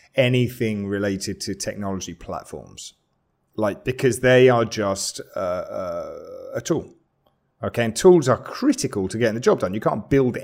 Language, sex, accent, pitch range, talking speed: English, male, British, 95-120 Hz, 155 wpm